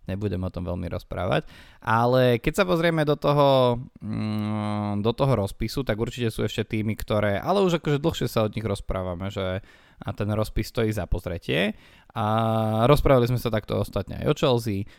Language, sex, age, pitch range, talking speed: Slovak, male, 20-39, 105-125 Hz, 180 wpm